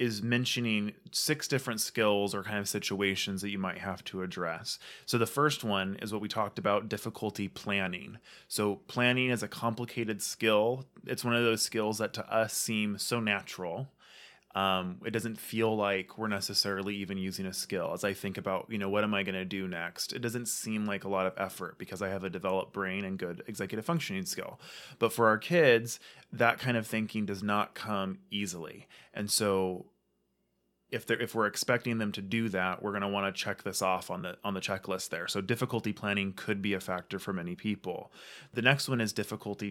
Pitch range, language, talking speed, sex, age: 100-115 Hz, English, 210 wpm, male, 20-39